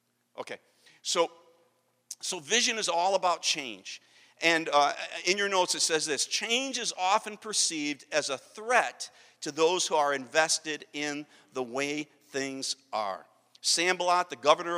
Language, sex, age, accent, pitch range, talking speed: English, male, 50-69, American, 135-185 Hz, 145 wpm